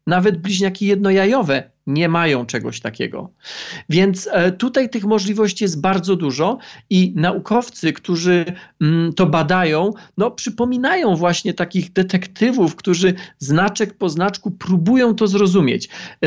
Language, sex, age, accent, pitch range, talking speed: Polish, male, 40-59, native, 170-205 Hz, 110 wpm